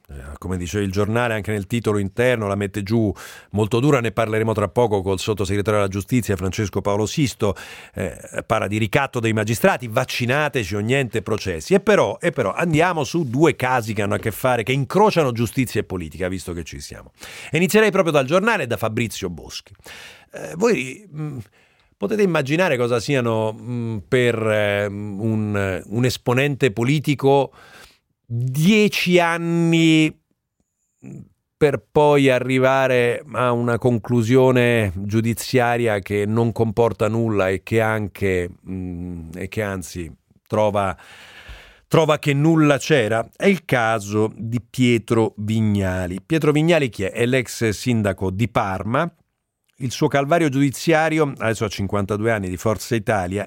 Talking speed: 145 wpm